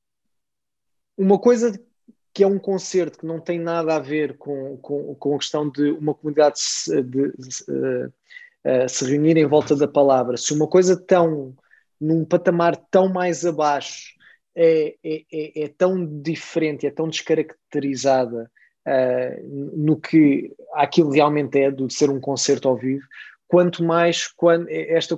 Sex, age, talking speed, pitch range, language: male, 20-39, 155 wpm, 145-175 Hz, Portuguese